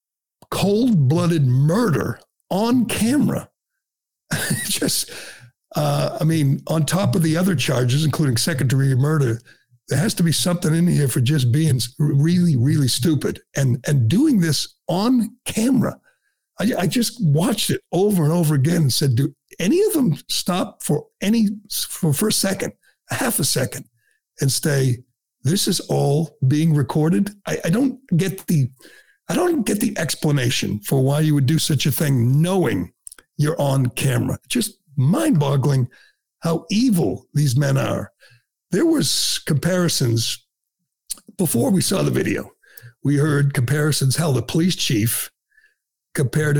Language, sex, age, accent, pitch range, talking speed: English, male, 60-79, American, 135-180 Hz, 150 wpm